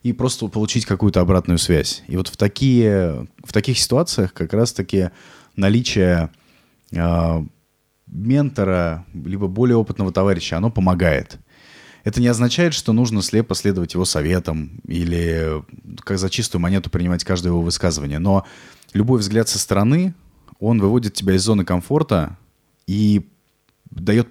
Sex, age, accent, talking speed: male, 20-39, native, 135 wpm